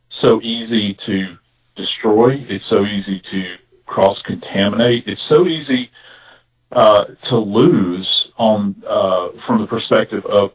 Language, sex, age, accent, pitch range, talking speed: English, male, 40-59, American, 100-120 Hz, 125 wpm